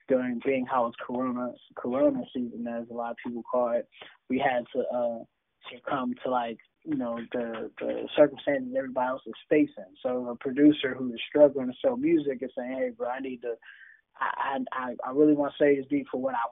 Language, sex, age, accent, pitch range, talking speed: English, male, 20-39, American, 125-155 Hz, 210 wpm